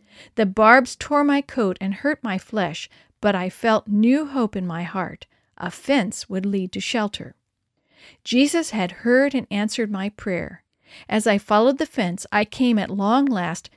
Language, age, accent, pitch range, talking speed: English, 50-69, American, 190-245 Hz, 175 wpm